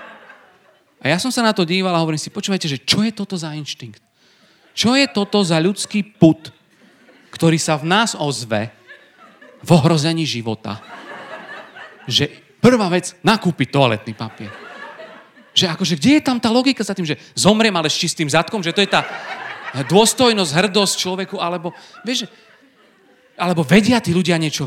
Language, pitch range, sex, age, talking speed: Slovak, 155-205 Hz, male, 40-59, 165 wpm